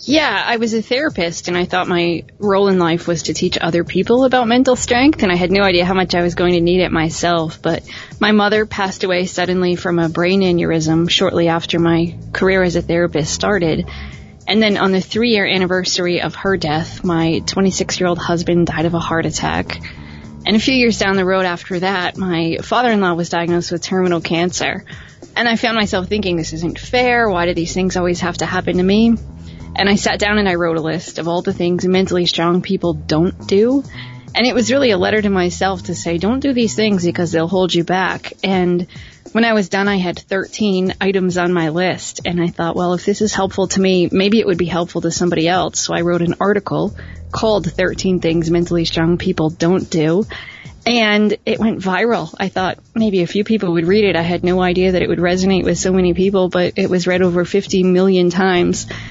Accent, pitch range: American, 170-195 Hz